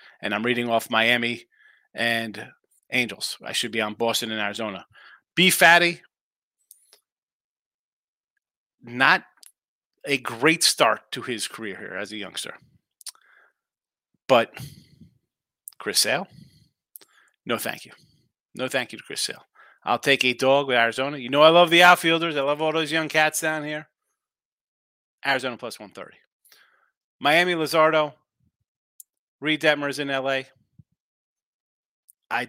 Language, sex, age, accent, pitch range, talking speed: English, male, 30-49, American, 120-170 Hz, 125 wpm